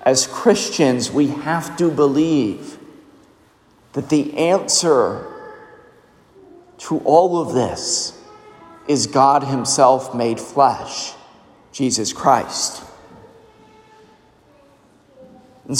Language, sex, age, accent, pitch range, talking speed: English, male, 40-59, American, 130-175 Hz, 80 wpm